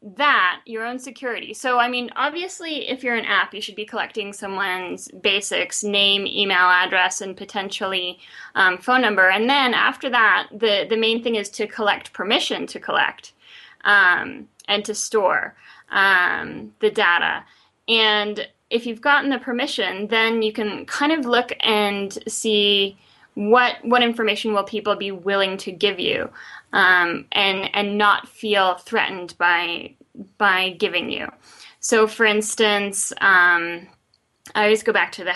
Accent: American